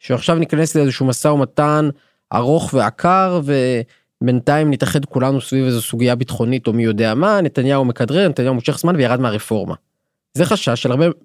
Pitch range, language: 115-150 Hz, Hebrew